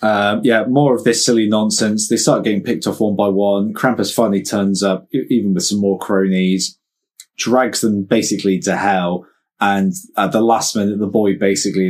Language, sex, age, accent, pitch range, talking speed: English, male, 20-39, British, 95-120 Hz, 190 wpm